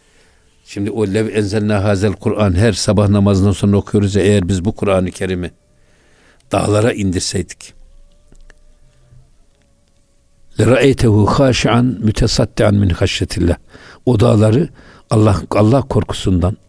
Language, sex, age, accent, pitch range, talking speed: Turkish, male, 60-79, native, 95-110 Hz, 105 wpm